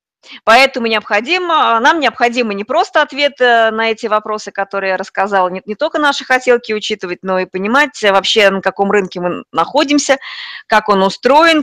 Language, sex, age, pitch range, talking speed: Russian, female, 20-39, 195-255 Hz, 155 wpm